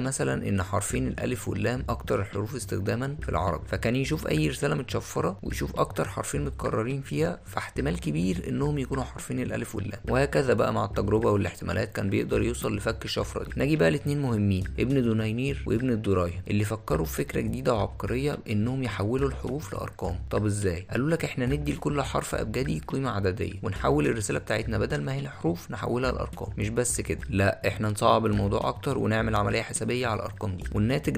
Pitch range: 100-125 Hz